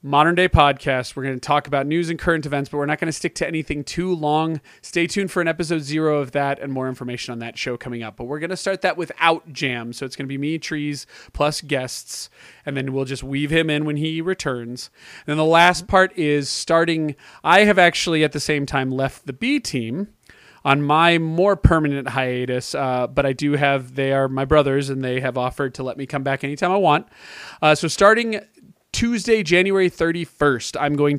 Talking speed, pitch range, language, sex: 225 wpm, 135-170 Hz, English, male